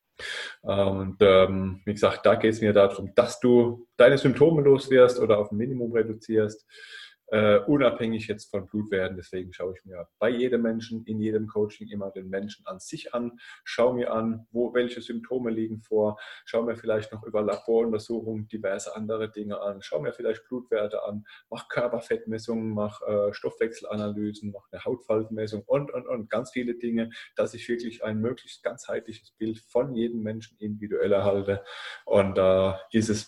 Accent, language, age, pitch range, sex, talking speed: German, German, 20-39, 105-120 Hz, male, 170 wpm